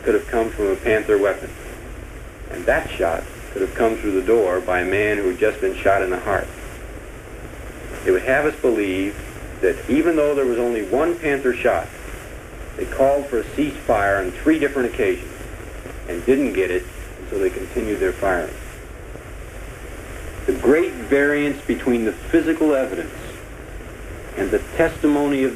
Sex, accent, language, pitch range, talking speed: male, American, English, 110-170 Hz, 165 wpm